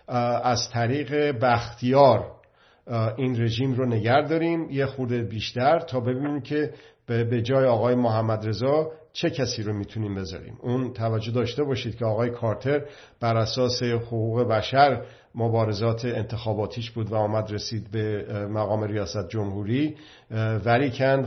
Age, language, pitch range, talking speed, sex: 50-69, Persian, 110-135 Hz, 125 wpm, male